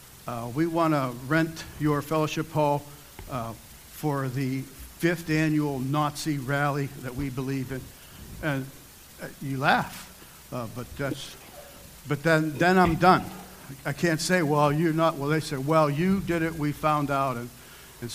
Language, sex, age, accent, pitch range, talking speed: English, male, 60-79, American, 130-155 Hz, 160 wpm